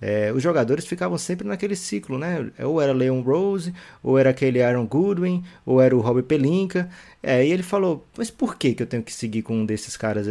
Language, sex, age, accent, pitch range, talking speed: Portuguese, male, 20-39, Brazilian, 120-160 Hz, 220 wpm